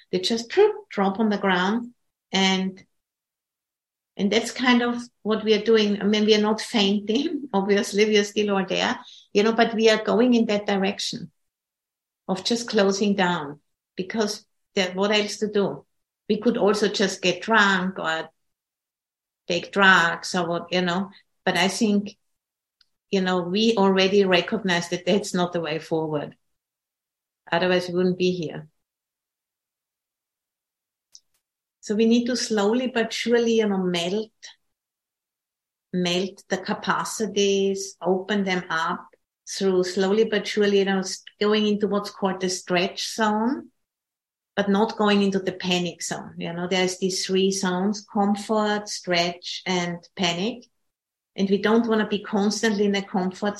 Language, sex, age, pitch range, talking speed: English, female, 50-69, 185-215 Hz, 150 wpm